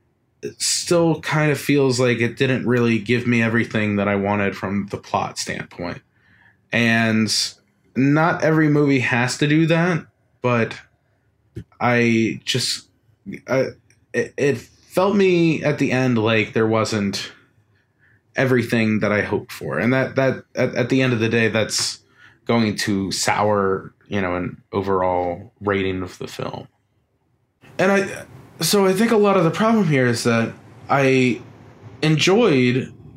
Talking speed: 145 wpm